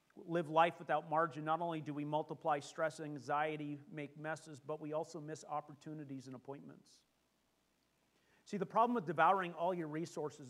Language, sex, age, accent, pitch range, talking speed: English, male, 40-59, American, 145-170 Hz, 160 wpm